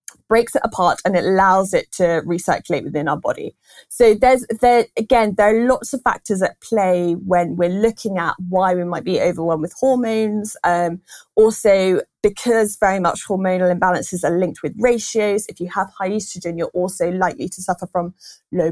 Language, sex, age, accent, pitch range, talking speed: English, female, 20-39, British, 170-210 Hz, 185 wpm